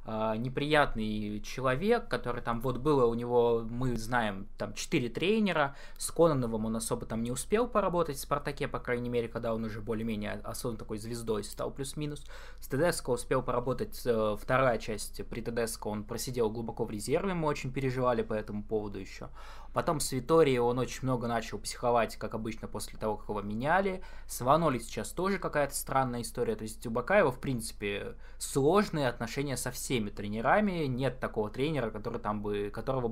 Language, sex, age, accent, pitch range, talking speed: Russian, male, 20-39, native, 115-150 Hz, 170 wpm